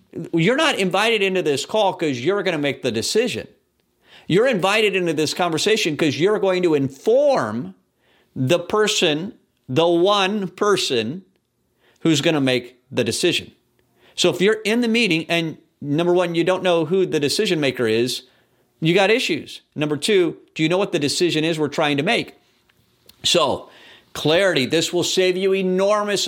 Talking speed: 170 wpm